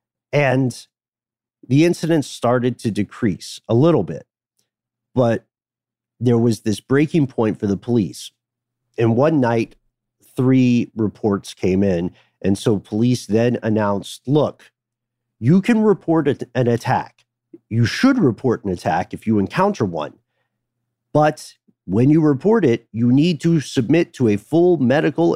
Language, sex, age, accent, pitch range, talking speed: English, male, 40-59, American, 110-140 Hz, 135 wpm